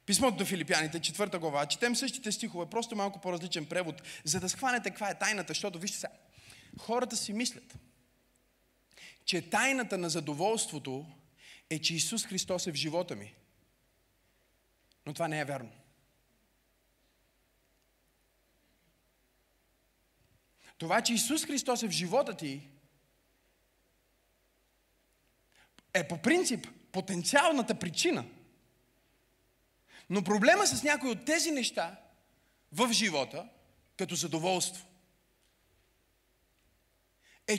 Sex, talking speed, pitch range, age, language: male, 105 wpm, 145-225 Hz, 30-49, Bulgarian